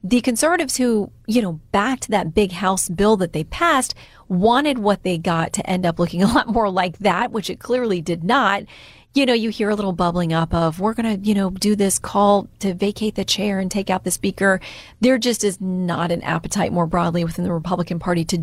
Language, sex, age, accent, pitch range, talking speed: English, female, 30-49, American, 175-230 Hz, 230 wpm